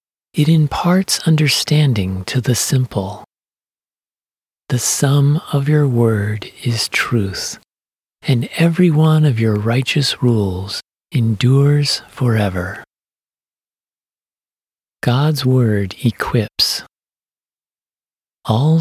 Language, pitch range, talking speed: English, 105-145 Hz, 85 wpm